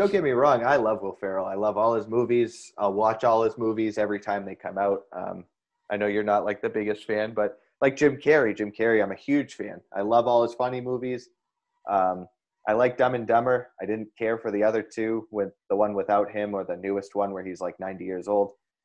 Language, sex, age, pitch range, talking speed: English, male, 20-39, 105-135 Hz, 240 wpm